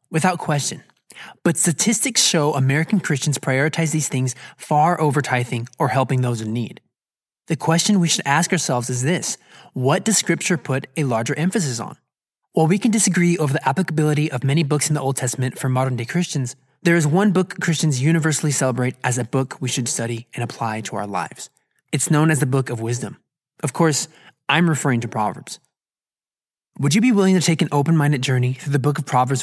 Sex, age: male, 20-39